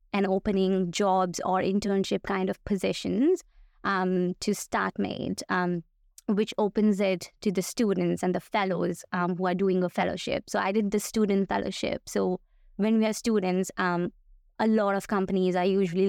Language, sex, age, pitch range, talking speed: English, female, 20-39, 180-210 Hz, 165 wpm